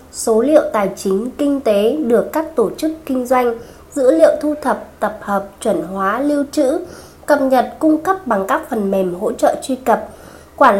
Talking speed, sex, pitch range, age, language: 195 wpm, female, 215-295 Hz, 20-39, Vietnamese